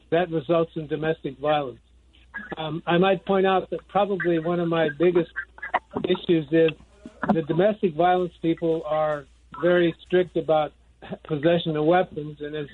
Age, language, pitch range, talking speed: 60-79, English, 160-185 Hz, 145 wpm